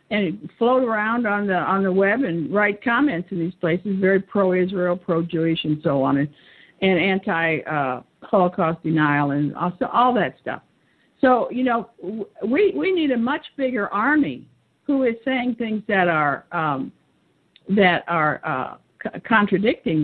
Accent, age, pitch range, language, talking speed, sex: American, 50-69, 170-235 Hz, English, 155 wpm, female